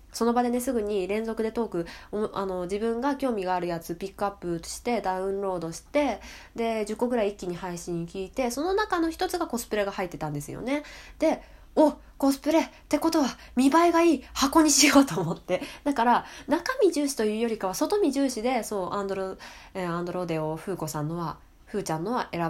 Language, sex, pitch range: Japanese, female, 185-290 Hz